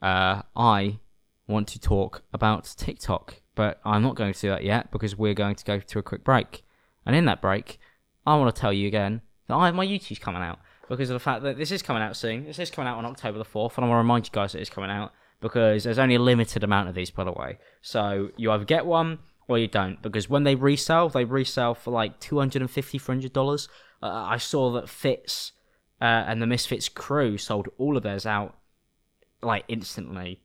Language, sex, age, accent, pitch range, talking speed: English, male, 20-39, British, 100-125 Hz, 230 wpm